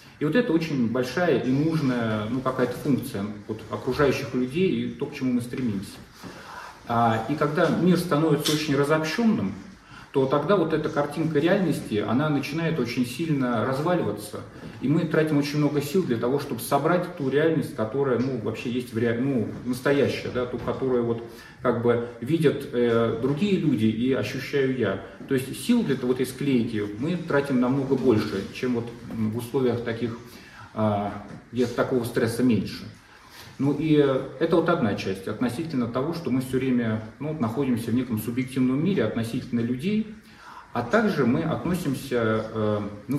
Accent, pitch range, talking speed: native, 115-145 Hz, 160 wpm